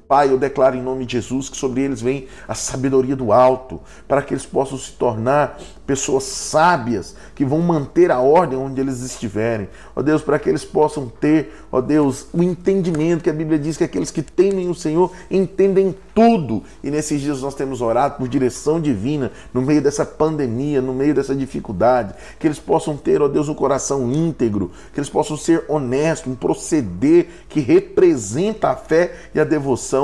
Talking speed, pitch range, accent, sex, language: 190 wpm, 130-170 Hz, Brazilian, male, Portuguese